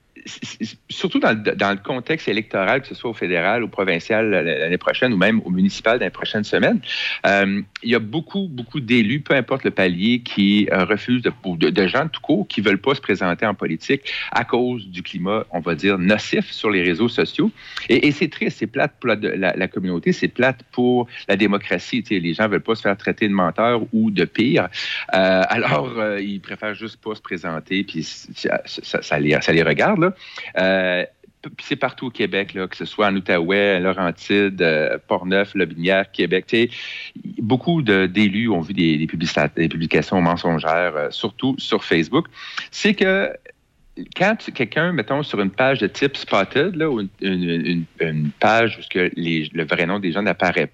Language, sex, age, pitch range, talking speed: French, male, 50-69, 95-125 Hz, 190 wpm